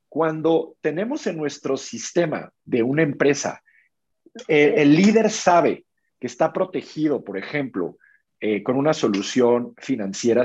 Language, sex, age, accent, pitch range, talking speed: Spanish, male, 50-69, Mexican, 120-170 Hz, 125 wpm